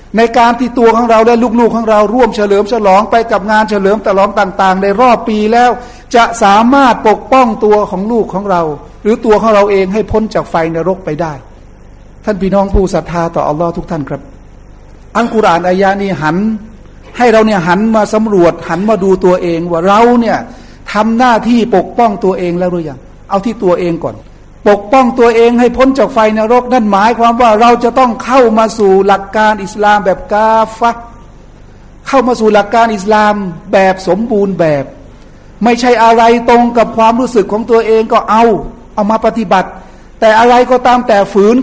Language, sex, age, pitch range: Thai, male, 60-79, 190-235 Hz